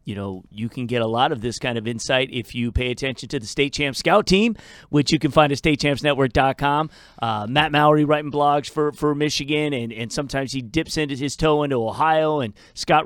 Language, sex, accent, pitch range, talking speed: English, male, American, 120-150 Hz, 215 wpm